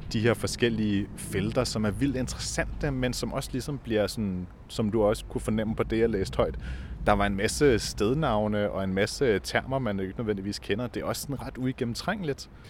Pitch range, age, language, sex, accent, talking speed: 100-120 Hz, 30-49, Danish, male, native, 205 wpm